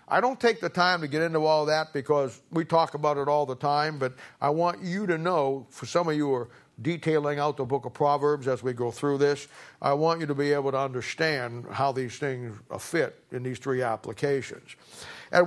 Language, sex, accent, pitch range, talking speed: English, male, American, 135-160 Hz, 225 wpm